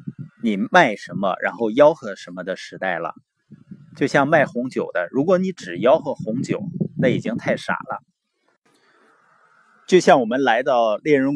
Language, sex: Chinese, male